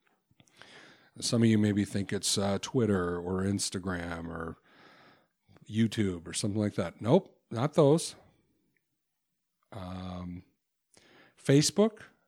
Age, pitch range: 40-59, 100-135 Hz